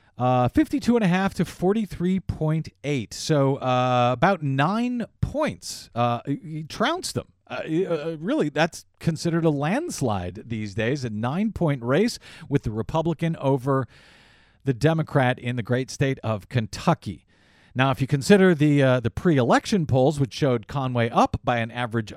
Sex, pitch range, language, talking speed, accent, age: male, 115-165 Hz, English, 140 wpm, American, 40-59